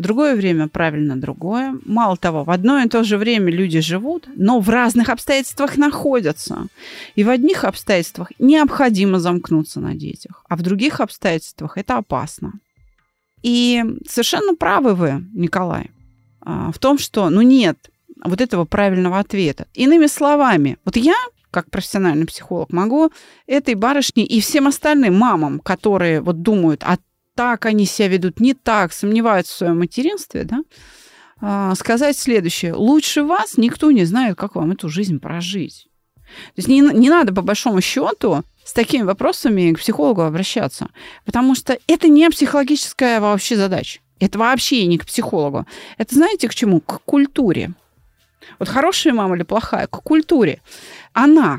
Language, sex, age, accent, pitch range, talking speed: Russian, female, 30-49, native, 185-275 Hz, 150 wpm